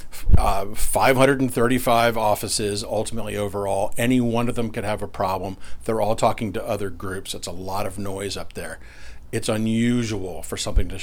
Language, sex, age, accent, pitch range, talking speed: English, male, 40-59, American, 90-115 Hz, 170 wpm